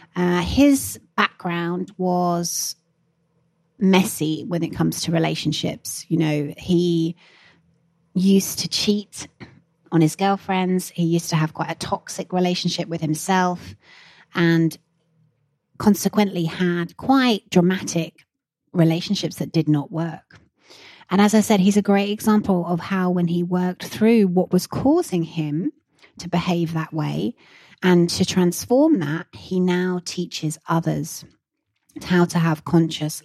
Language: English